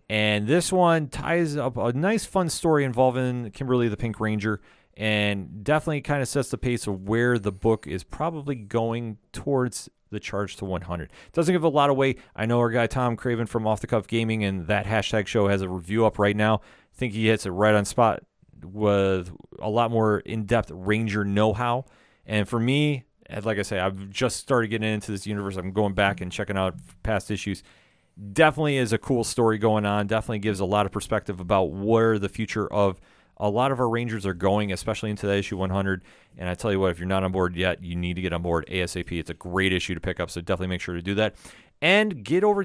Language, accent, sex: English, American, male